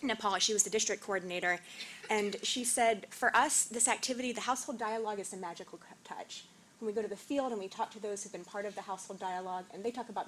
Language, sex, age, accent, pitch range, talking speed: English, female, 20-39, American, 180-225 Hz, 250 wpm